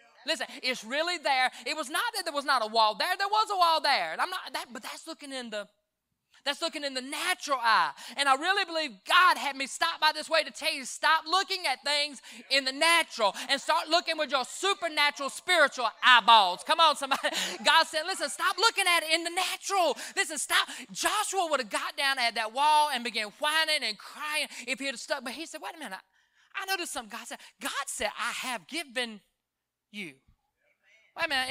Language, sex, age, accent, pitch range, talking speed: English, male, 20-39, American, 245-325 Hz, 225 wpm